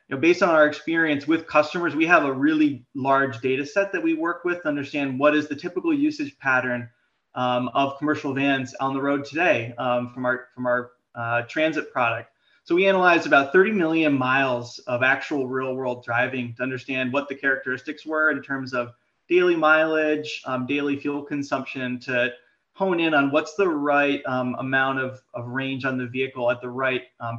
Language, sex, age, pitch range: English, male, 30-49, 125-155 Hz